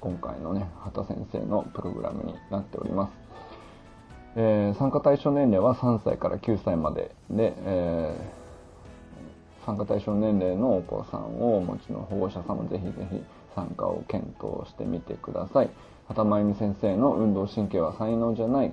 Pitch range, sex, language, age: 95-115 Hz, male, Japanese, 20-39